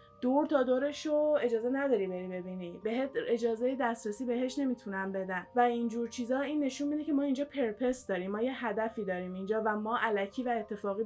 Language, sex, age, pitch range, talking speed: Persian, female, 10-29, 200-250 Hz, 190 wpm